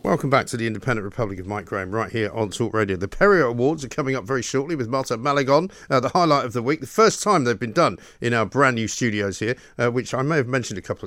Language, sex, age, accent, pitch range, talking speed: English, male, 50-69, British, 120-150 Hz, 275 wpm